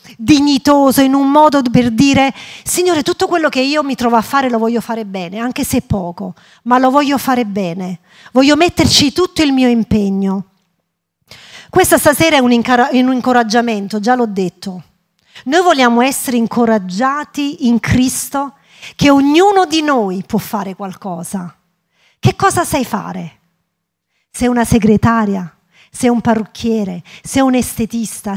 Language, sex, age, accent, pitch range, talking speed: Italian, female, 40-59, native, 200-285 Hz, 145 wpm